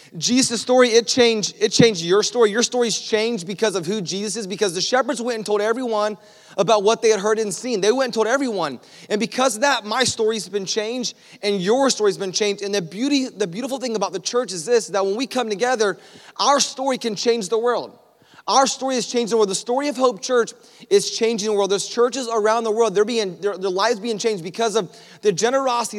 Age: 30-49